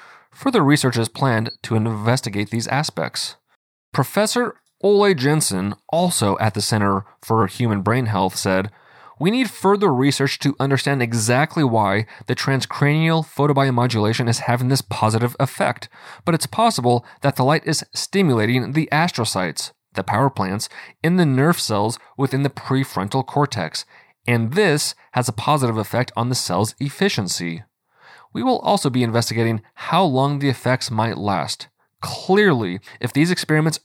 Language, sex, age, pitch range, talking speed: English, male, 30-49, 110-145 Hz, 145 wpm